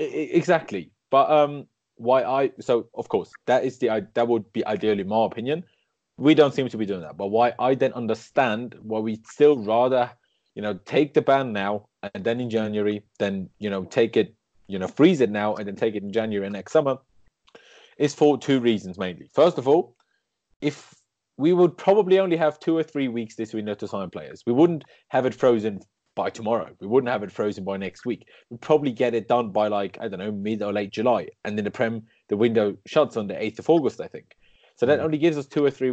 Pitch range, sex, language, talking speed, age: 110-155 Hz, male, English, 225 wpm, 20-39